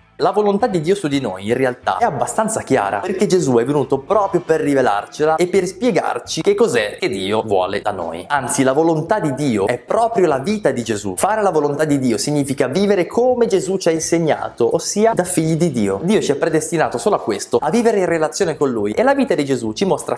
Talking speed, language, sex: 230 wpm, Italian, male